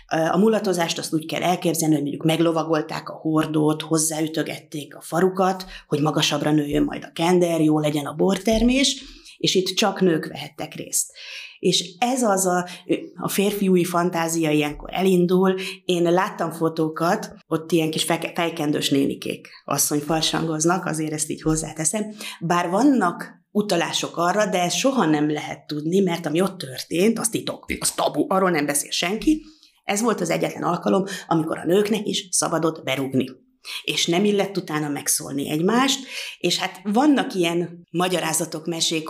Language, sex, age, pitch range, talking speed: Hungarian, female, 30-49, 155-190 Hz, 150 wpm